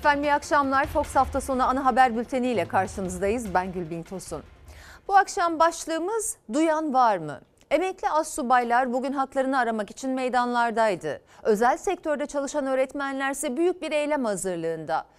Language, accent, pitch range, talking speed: Turkish, native, 215-310 Hz, 140 wpm